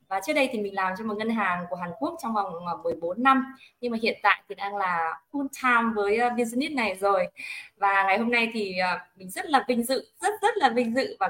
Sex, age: female, 20-39